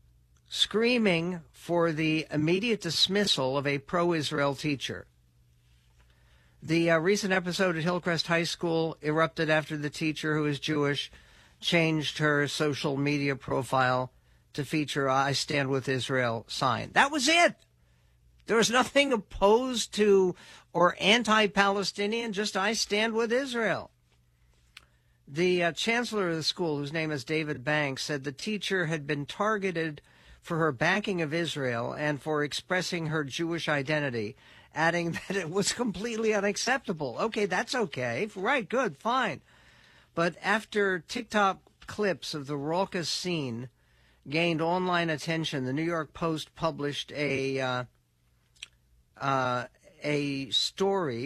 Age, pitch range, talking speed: 60-79, 135-185 Hz, 130 wpm